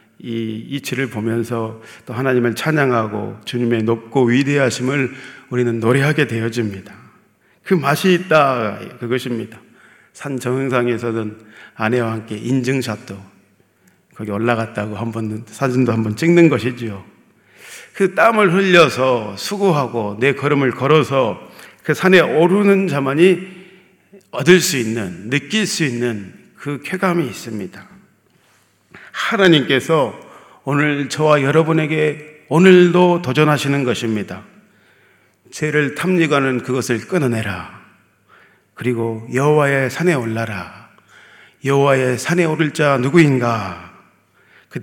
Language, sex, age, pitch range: Korean, male, 40-59, 115-155 Hz